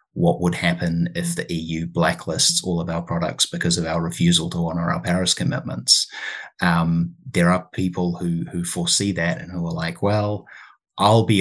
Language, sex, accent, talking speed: English, male, Australian, 185 wpm